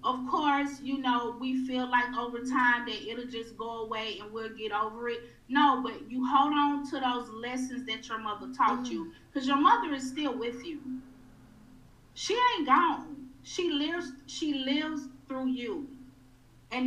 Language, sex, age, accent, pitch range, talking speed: English, female, 30-49, American, 225-275 Hz, 175 wpm